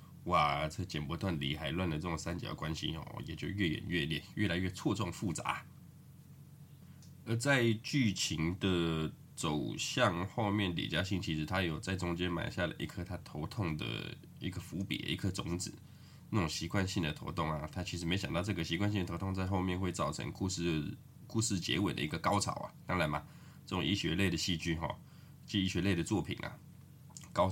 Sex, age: male, 20-39